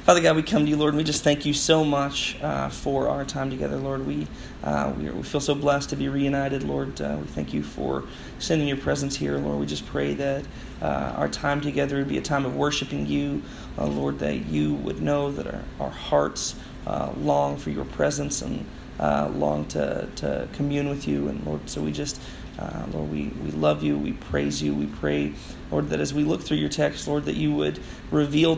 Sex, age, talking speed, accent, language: male, 30-49, 225 wpm, American, English